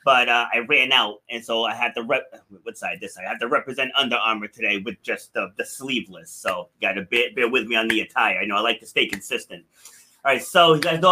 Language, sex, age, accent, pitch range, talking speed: English, male, 30-49, American, 145-185 Hz, 270 wpm